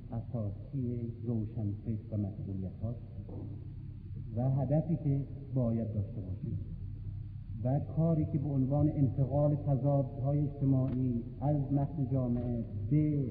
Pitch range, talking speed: 115-170 Hz, 100 wpm